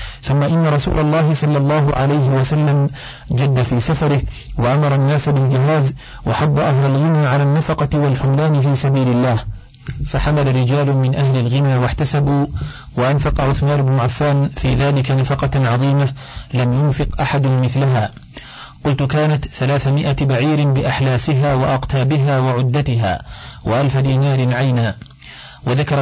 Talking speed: 120 wpm